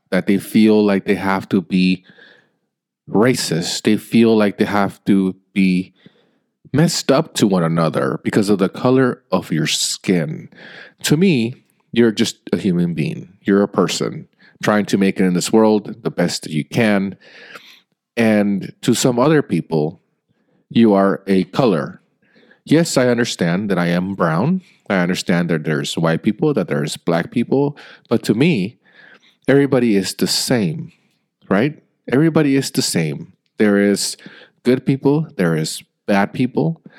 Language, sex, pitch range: English, male, 95-145 Hz